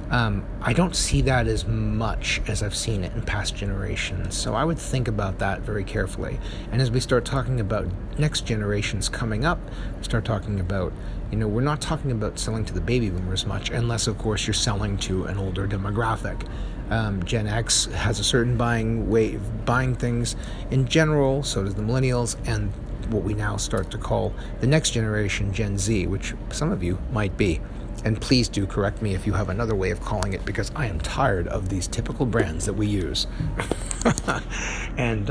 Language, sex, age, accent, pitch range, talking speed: English, male, 40-59, American, 100-120 Hz, 195 wpm